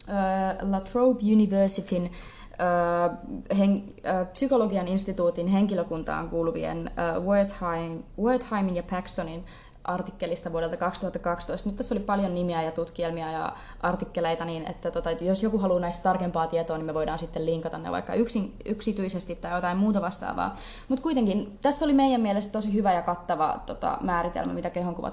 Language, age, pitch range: Finnish, 20-39, 175-210 Hz